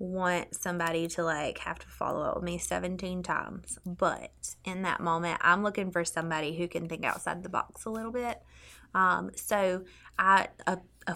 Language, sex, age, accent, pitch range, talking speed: English, female, 20-39, American, 165-195 Hz, 185 wpm